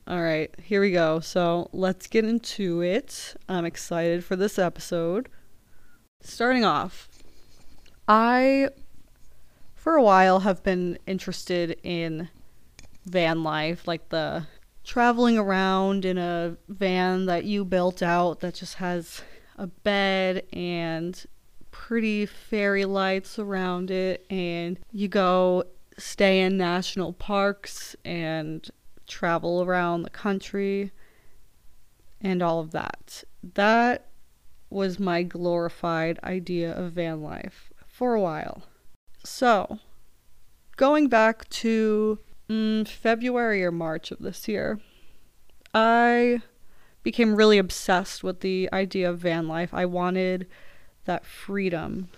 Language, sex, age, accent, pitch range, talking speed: English, female, 20-39, American, 175-205 Hz, 115 wpm